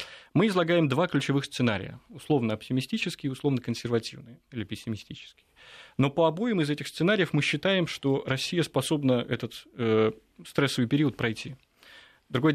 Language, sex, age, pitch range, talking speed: Russian, male, 30-49, 115-145 Hz, 140 wpm